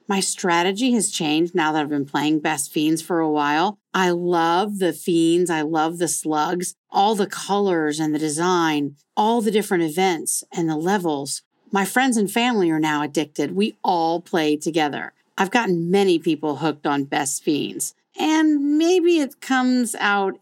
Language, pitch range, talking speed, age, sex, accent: English, 155-205 Hz, 175 wpm, 40-59, female, American